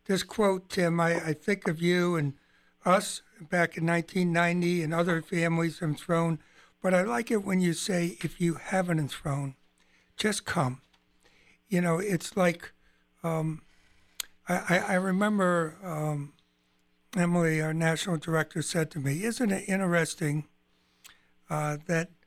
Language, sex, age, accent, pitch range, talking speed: English, male, 60-79, American, 155-185 Hz, 140 wpm